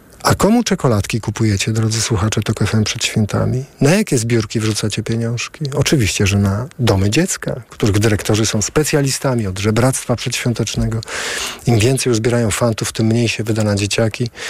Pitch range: 110-130 Hz